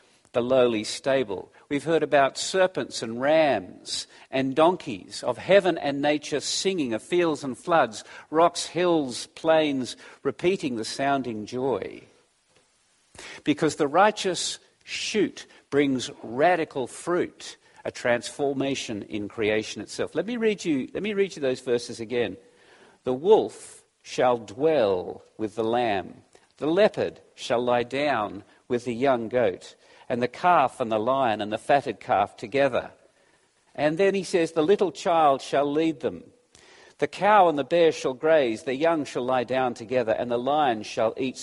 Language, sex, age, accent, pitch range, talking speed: English, male, 50-69, Australian, 125-165 Hz, 150 wpm